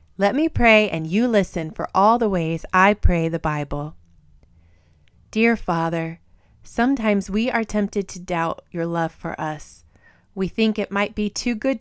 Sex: female